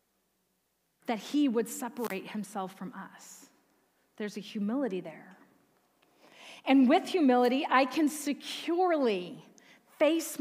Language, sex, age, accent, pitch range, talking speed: English, female, 40-59, American, 235-300 Hz, 105 wpm